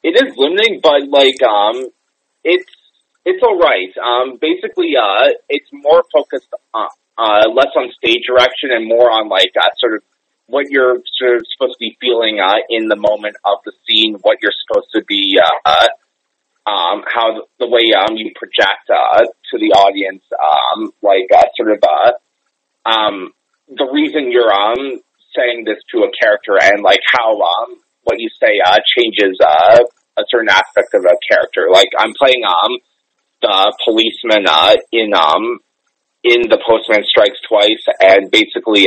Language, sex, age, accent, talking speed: English, male, 30-49, American, 170 wpm